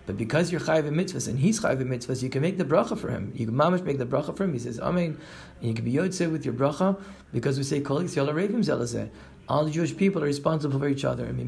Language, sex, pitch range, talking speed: English, male, 130-165 Hz, 255 wpm